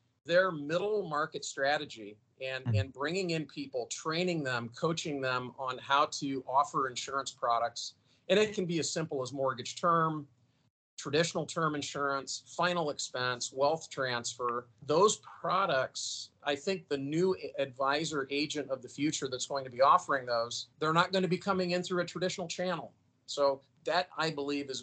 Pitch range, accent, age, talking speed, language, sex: 125-145 Hz, American, 40-59, 165 wpm, English, male